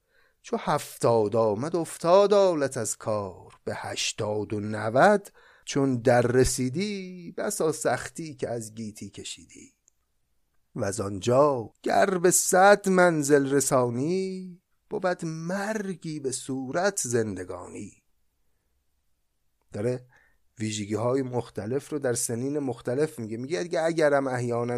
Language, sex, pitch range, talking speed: Persian, male, 115-175 Hz, 110 wpm